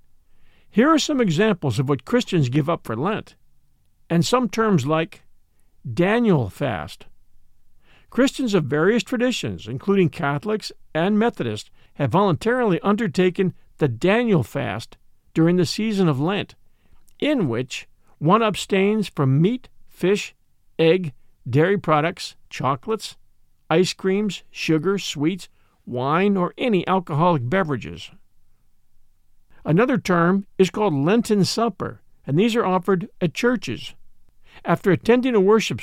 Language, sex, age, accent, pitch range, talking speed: English, male, 50-69, American, 150-205 Hz, 120 wpm